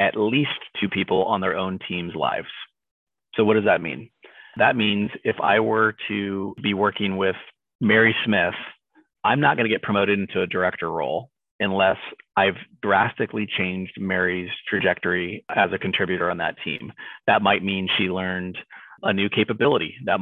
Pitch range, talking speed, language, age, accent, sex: 95-105 Hz, 165 wpm, English, 30-49, American, male